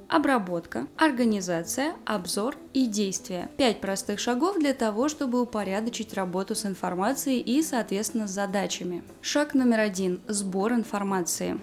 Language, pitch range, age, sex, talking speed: Russian, 200-255 Hz, 20-39, female, 125 wpm